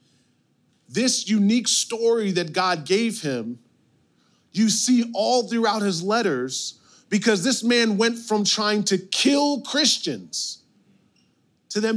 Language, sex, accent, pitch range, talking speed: English, male, American, 160-210 Hz, 120 wpm